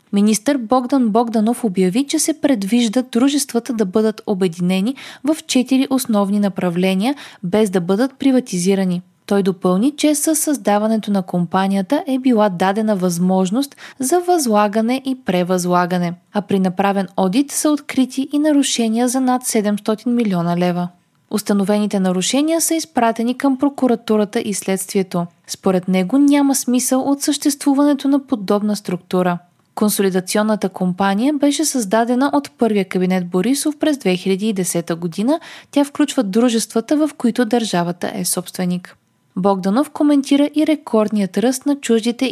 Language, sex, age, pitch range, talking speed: Bulgarian, female, 20-39, 190-270 Hz, 130 wpm